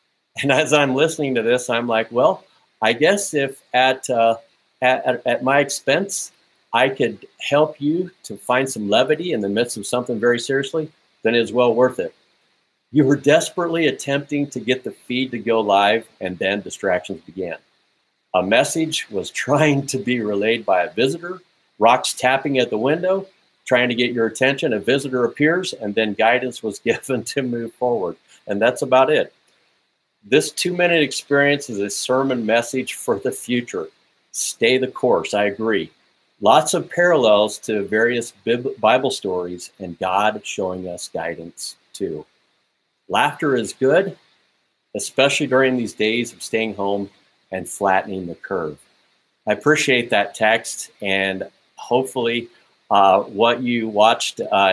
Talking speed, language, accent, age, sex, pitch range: 155 wpm, English, American, 50-69, male, 105-140 Hz